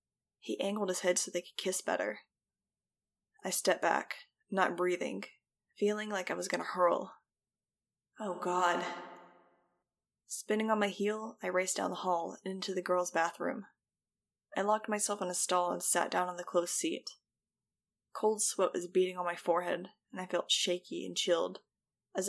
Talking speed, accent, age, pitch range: 170 wpm, American, 10-29, 180-205 Hz